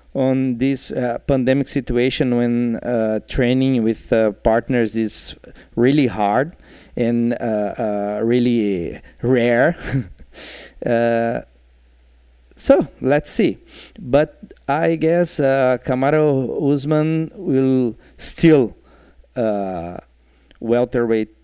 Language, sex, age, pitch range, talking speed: English, male, 40-59, 110-140 Hz, 90 wpm